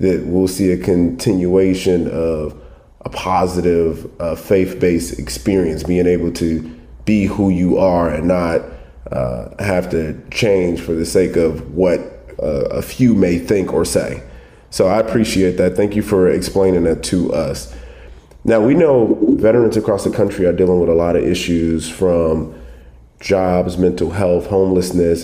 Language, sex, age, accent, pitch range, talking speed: English, male, 30-49, American, 85-95 Hz, 155 wpm